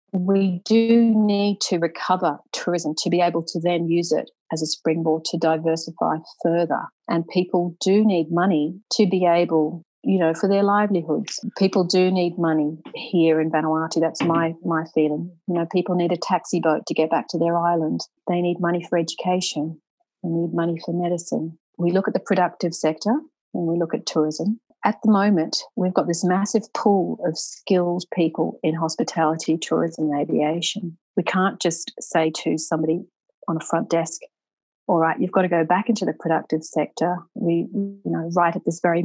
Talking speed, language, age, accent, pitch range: 185 wpm, English, 40-59, Australian, 165-185 Hz